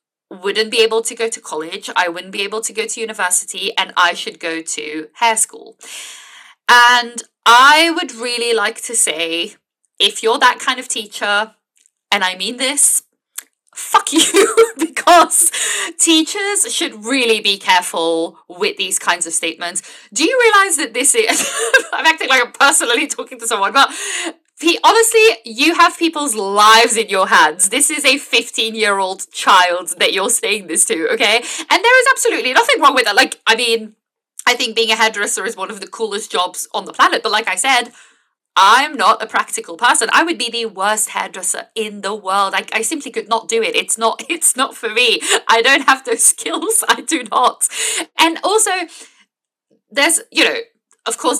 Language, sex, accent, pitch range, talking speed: English, female, British, 210-335 Hz, 185 wpm